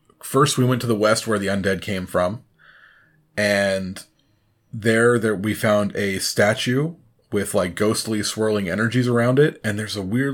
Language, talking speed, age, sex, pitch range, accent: English, 170 wpm, 30-49, male, 95-120 Hz, American